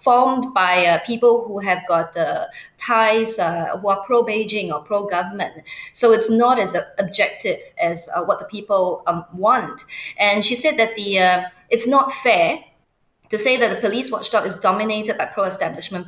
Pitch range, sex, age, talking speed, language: 180-230 Hz, female, 20-39, 175 wpm, English